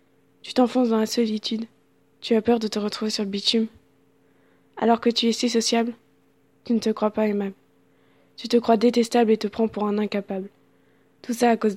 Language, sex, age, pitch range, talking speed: French, female, 20-39, 210-235 Hz, 205 wpm